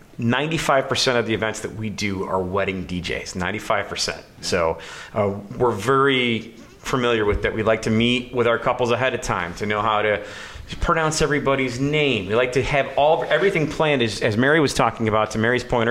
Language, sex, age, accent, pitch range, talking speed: English, male, 30-49, American, 110-135 Hz, 200 wpm